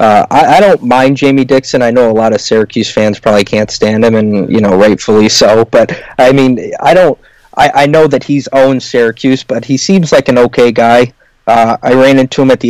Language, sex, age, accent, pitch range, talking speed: English, male, 20-39, American, 110-130 Hz, 230 wpm